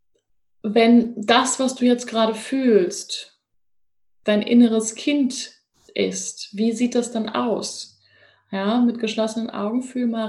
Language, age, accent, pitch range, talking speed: German, 20-39, German, 200-240 Hz, 130 wpm